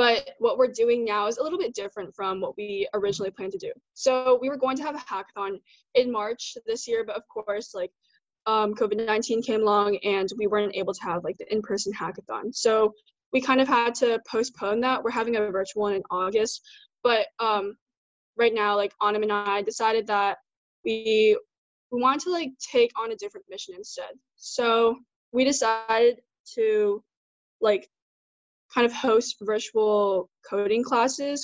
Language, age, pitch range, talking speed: English, 10-29, 205-265 Hz, 180 wpm